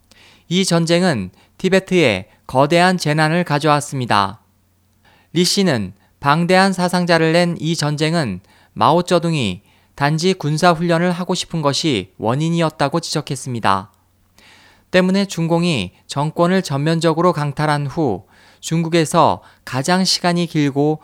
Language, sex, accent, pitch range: Korean, male, native, 110-170 Hz